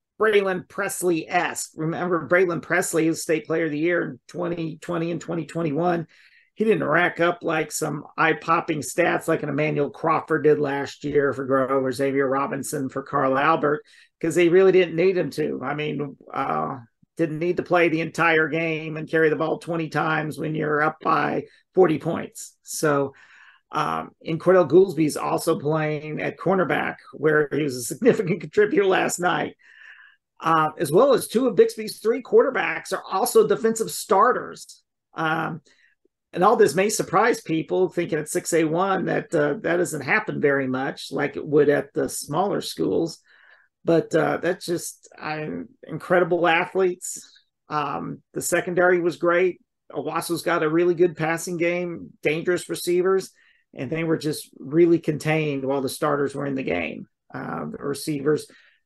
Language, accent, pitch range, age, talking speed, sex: English, American, 150-180 Hz, 40-59, 160 wpm, male